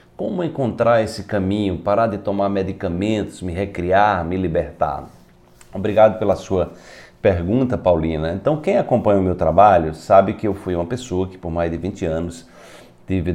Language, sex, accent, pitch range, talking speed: Portuguese, male, Brazilian, 85-105 Hz, 160 wpm